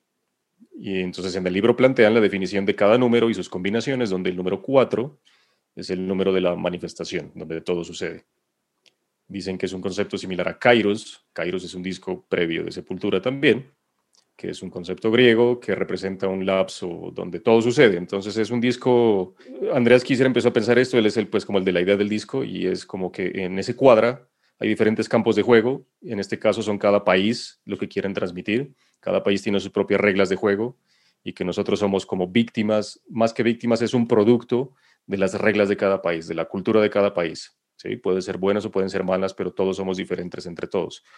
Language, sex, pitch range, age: Spanish, male, 95-115 Hz, 30-49